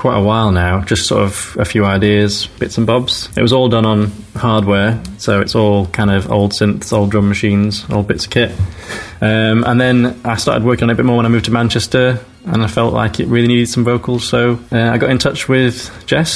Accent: British